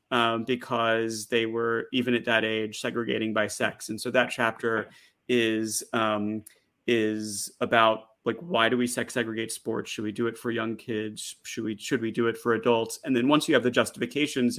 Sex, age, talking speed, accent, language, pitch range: male, 30-49, 200 wpm, American, English, 110-130 Hz